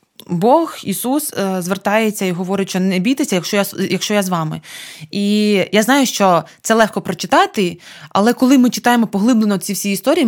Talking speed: 170 wpm